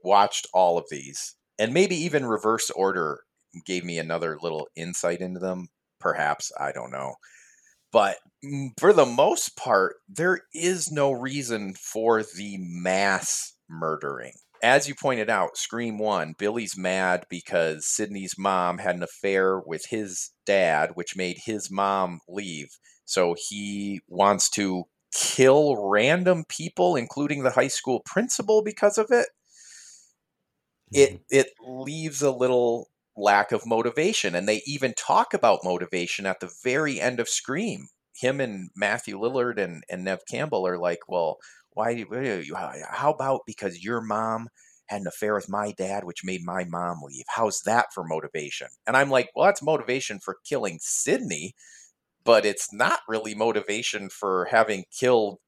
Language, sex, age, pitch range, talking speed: English, male, 30-49, 90-140 Hz, 150 wpm